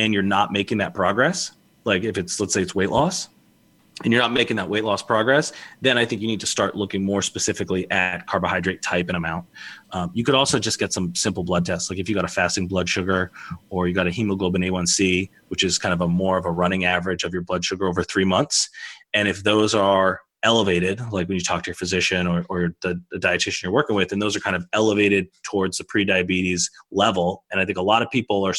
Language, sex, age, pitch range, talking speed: English, male, 30-49, 90-100 Hz, 245 wpm